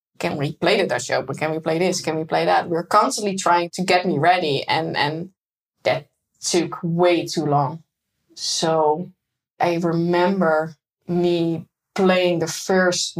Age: 20-39